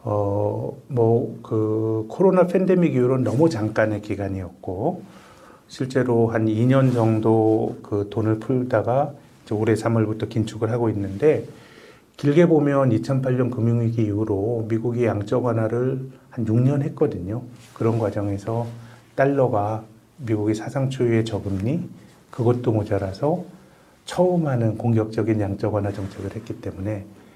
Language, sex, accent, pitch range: Korean, male, native, 105-125 Hz